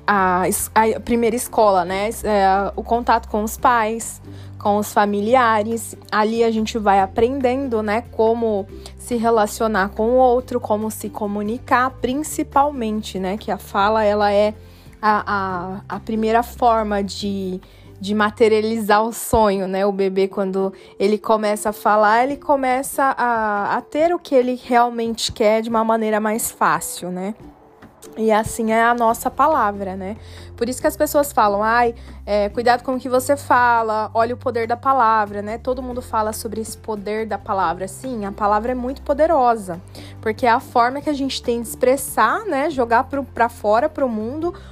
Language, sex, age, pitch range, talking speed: Portuguese, female, 20-39, 205-245 Hz, 170 wpm